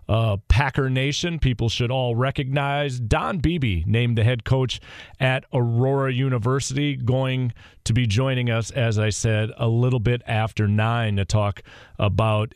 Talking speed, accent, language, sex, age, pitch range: 155 wpm, American, English, male, 40-59, 105-135 Hz